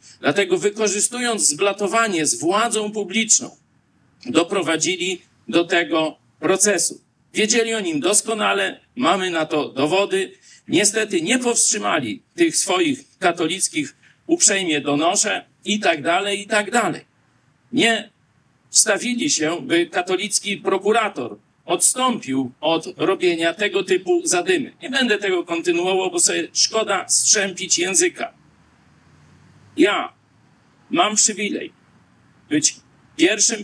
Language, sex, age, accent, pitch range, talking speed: Polish, male, 50-69, native, 185-235 Hz, 105 wpm